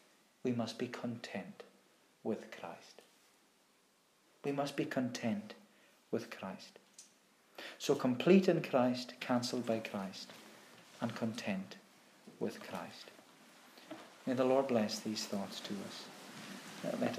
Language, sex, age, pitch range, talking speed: English, male, 50-69, 115-135 Hz, 110 wpm